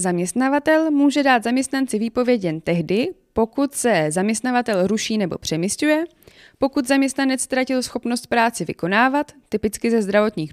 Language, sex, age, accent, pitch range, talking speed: Czech, female, 20-39, native, 190-260 Hz, 125 wpm